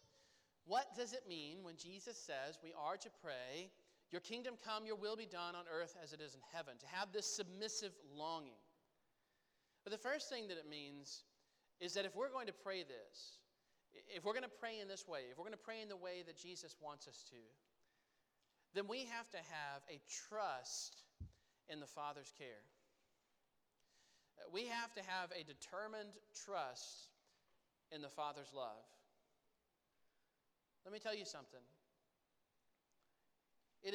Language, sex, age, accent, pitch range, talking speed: English, male, 40-59, American, 150-210 Hz, 165 wpm